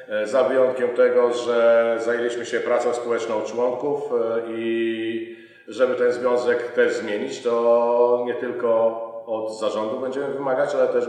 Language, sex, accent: Polish, male, native